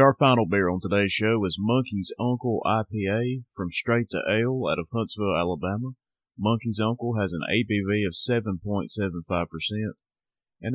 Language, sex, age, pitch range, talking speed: English, male, 30-49, 95-115 Hz, 145 wpm